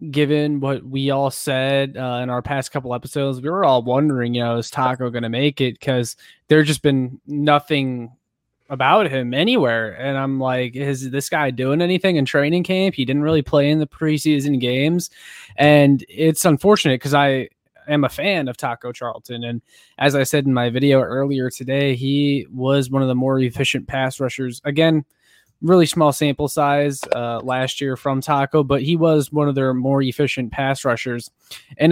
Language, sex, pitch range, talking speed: English, male, 130-150 Hz, 190 wpm